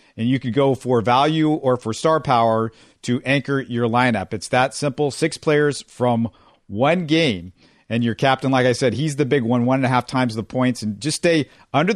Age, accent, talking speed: 50-69, American, 215 wpm